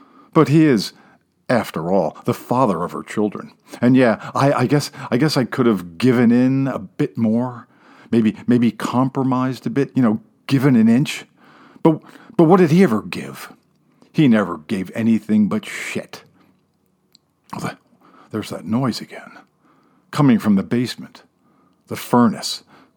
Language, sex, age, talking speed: English, male, 50-69, 155 wpm